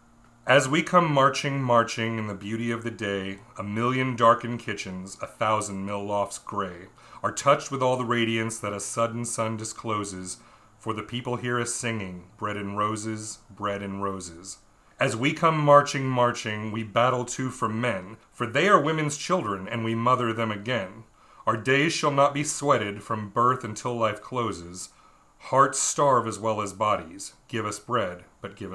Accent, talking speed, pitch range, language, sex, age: American, 175 wpm, 105-125 Hz, English, male, 30-49